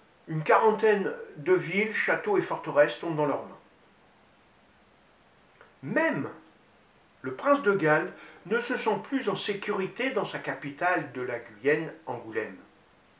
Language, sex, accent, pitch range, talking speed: French, male, French, 145-215 Hz, 125 wpm